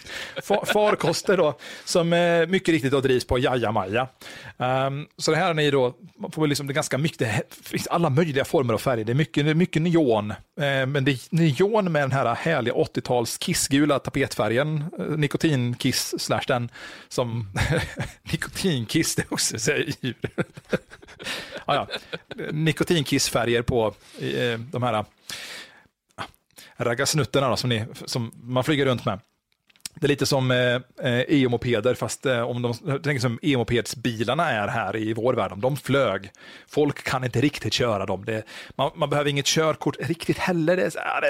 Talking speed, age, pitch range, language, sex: 160 wpm, 30-49, 125-160 Hz, Swedish, male